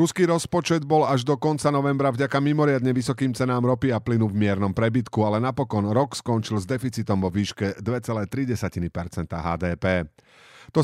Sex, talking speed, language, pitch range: male, 155 wpm, Slovak, 100-135 Hz